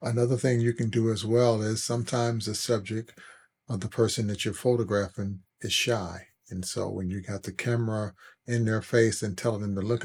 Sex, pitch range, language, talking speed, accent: male, 100-115 Hz, English, 205 wpm, American